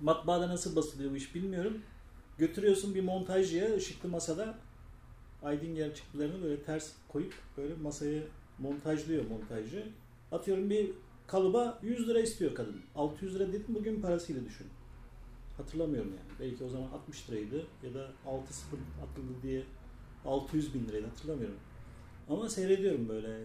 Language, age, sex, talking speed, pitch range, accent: Turkish, 40-59, male, 135 wpm, 120-185 Hz, native